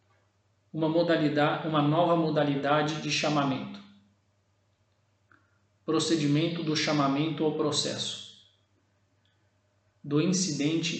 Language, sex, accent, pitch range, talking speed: Portuguese, male, Brazilian, 105-155 Hz, 75 wpm